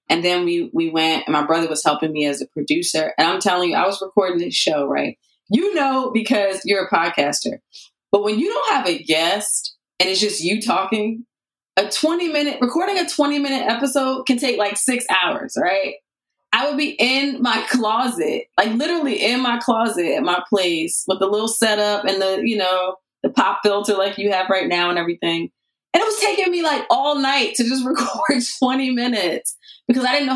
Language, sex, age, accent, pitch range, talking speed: English, female, 20-39, American, 170-255 Hz, 210 wpm